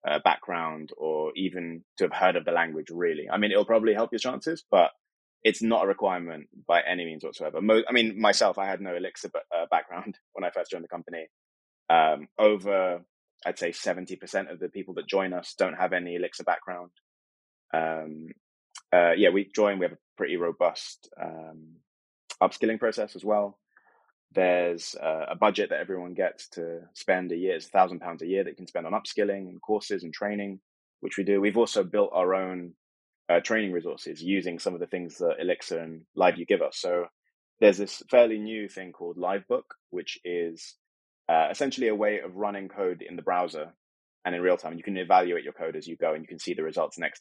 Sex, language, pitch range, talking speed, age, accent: male, English, 85-110 Hz, 205 wpm, 20-39, British